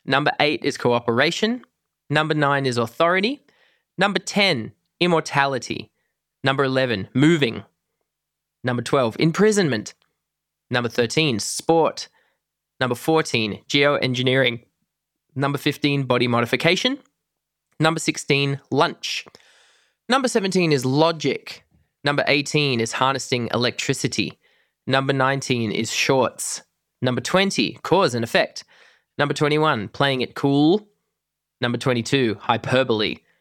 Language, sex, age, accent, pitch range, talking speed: English, male, 20-39, Australian, 125-160 Hz, 100 wpm